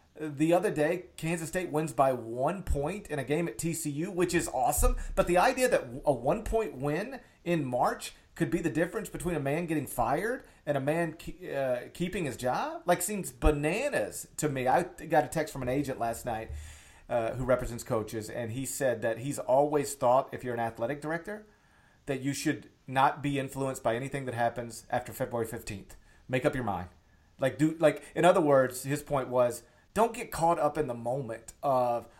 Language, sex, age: English, male, 40-59